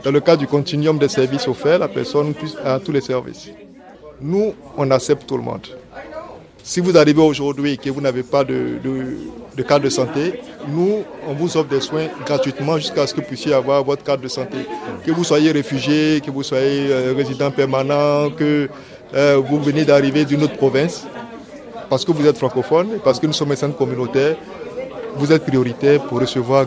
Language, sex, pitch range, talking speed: French, male, 135-155 Hz, 195 wpm